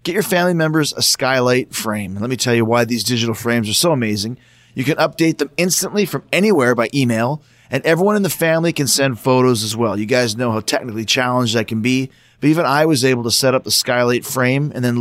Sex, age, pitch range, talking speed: male, 30-49, 120-155 Hz, 240 wpm